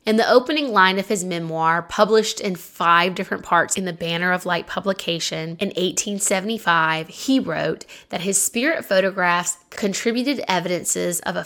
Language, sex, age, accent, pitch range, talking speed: English, female, 20-39, American, 175-225 Hz, 155 wpm